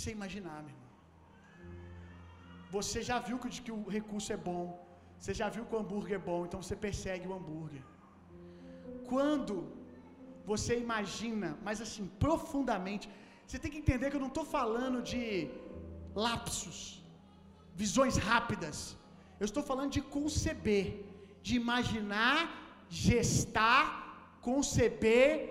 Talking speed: 125 wpm